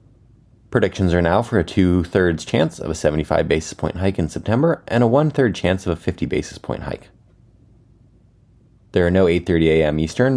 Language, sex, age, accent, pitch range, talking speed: English, male, 30-49, American, 80-115 Hz, 180 wpm